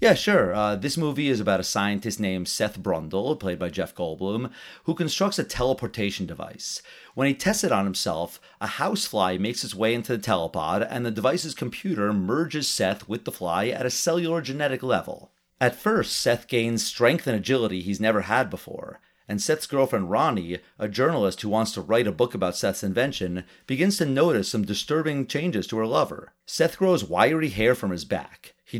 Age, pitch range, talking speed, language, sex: 40-59, 100-145 Hz, 190 wpm, English, male